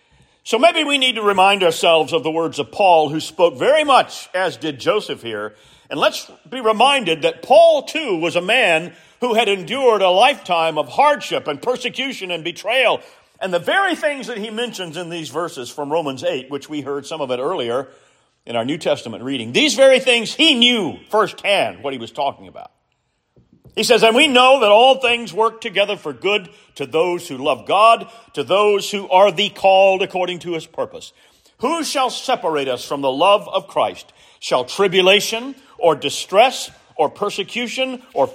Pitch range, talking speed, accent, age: 150-240 Hz, 190 wpm, American, 50-69